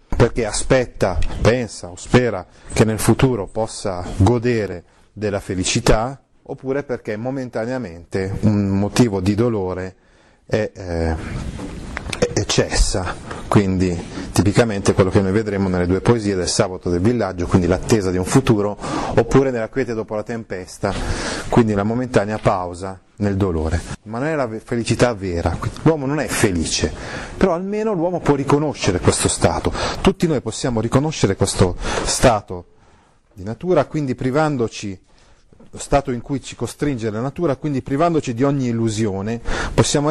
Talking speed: 140 wpm